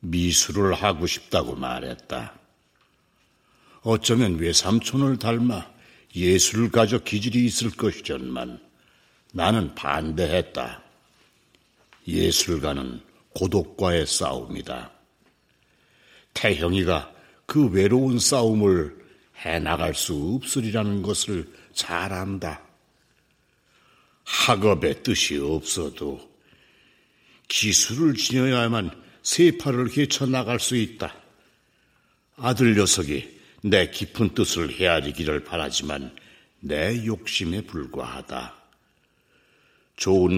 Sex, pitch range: male, 85-120 Hz